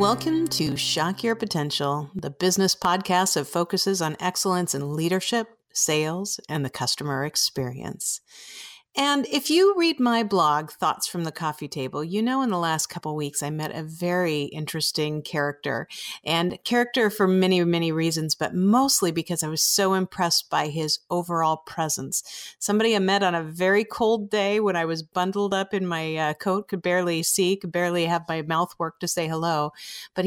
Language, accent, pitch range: English, American, 160-210 Hz